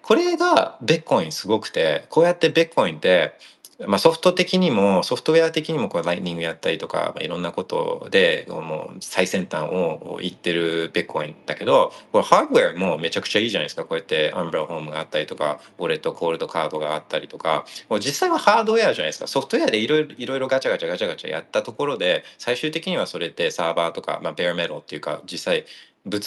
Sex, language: male, Japanese